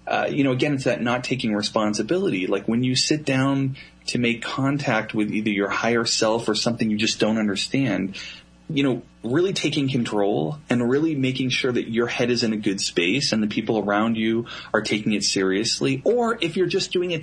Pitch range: 105-135 Hz